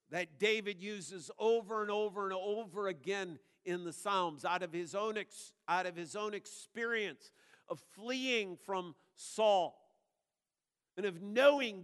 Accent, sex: American, male